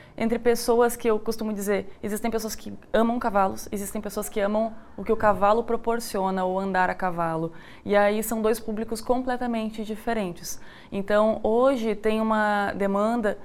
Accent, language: Brazilian, Portuguese